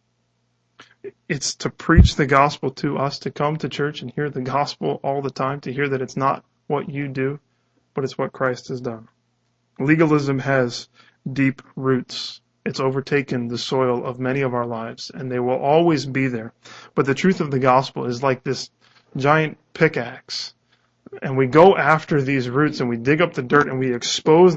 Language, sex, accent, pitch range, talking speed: English, male, American, 130-155 Hz, 190 wpm